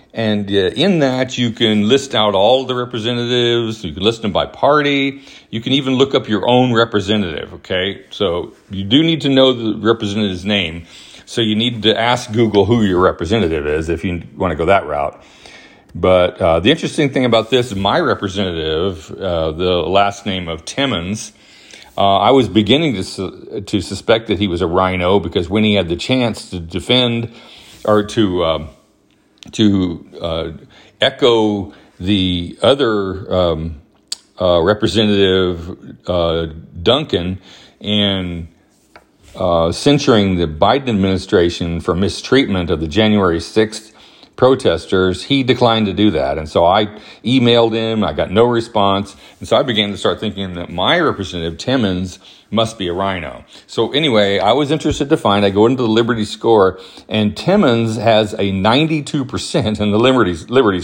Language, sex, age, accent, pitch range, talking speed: English, male, 40-59, American, 95-115 Hz, 165 wpm